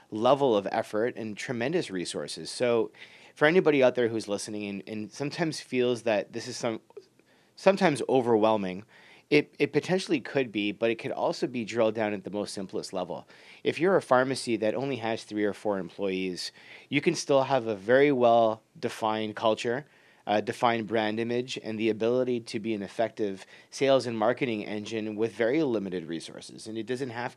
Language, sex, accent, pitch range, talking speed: English, male, American, 105-130 Hz, 180 wpm